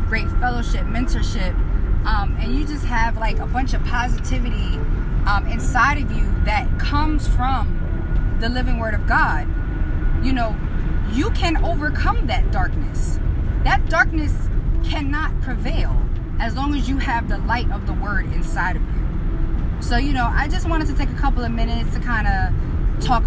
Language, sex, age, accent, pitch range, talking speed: English, female, 20-39, American, 80-95 Hz, 170 wpm